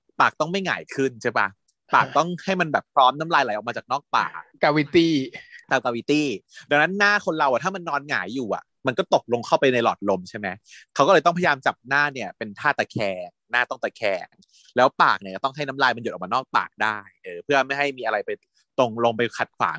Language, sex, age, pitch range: Thai, male, 30-49, 115-155 Hz